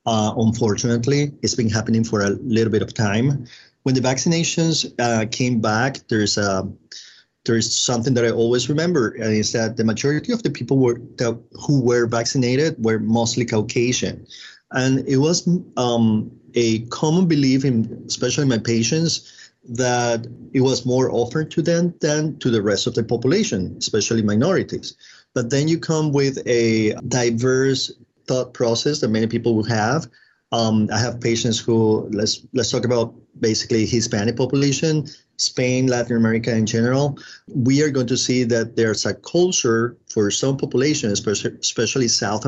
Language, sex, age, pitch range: English, male, 30-49, 110-130 Hz